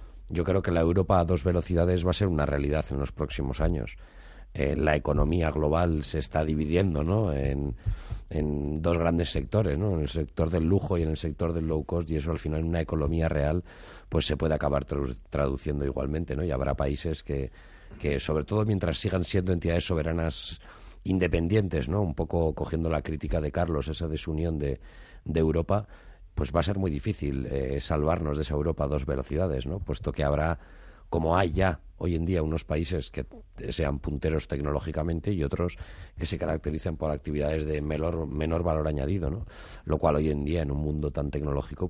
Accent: Spanish